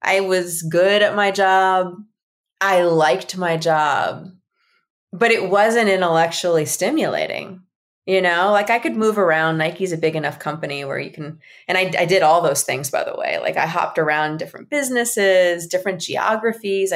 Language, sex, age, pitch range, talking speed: English, female, 20-39, 160-200 Hz, 170 wpm